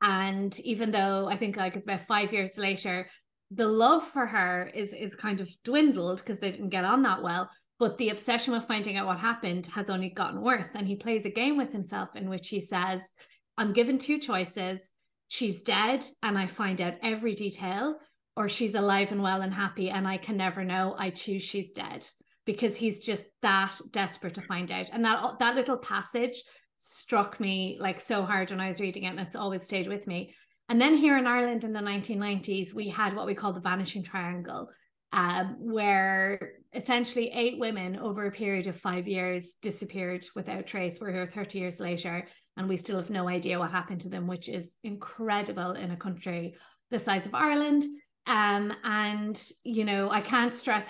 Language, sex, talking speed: English, female, 200 wpm